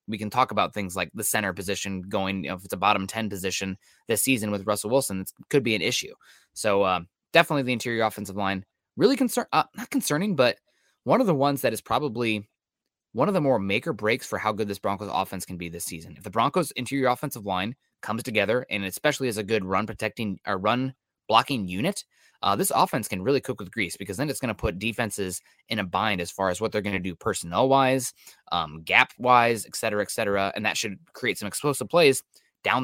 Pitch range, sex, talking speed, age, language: 100-125 Hz, male, 230 wpm, 20-39, English